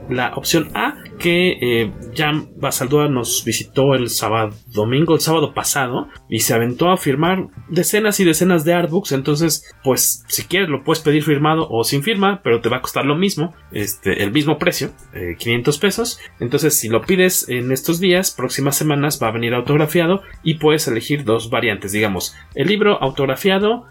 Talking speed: 180 wpm